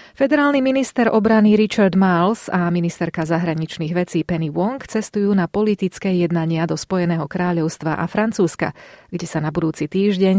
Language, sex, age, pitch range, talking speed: Slovak, female, 30-49, 170-210 Hz, 145 wpm